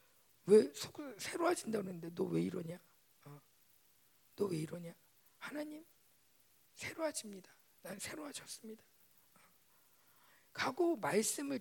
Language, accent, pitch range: Korean, native, 150-235 Hz